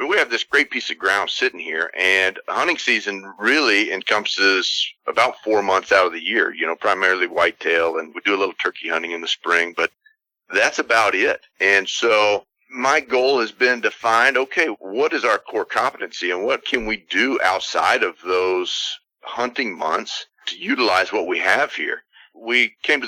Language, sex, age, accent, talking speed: English, male, 40-59, American, 190 wpm